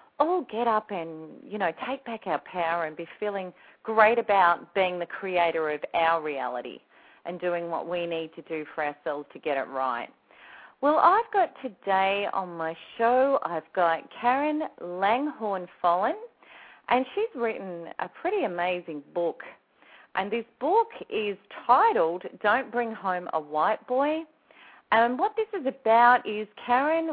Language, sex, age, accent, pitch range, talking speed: English, female, 40-59, Australian, 175-290 Hz, 155 wpm